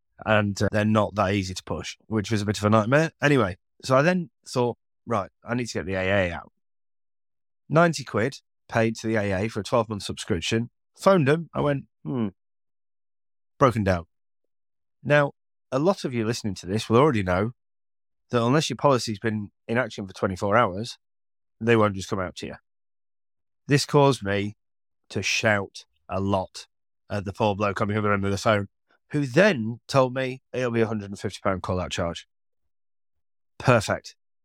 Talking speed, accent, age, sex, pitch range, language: 180 wpm, British, 30-49, male, 100-125 Hz, English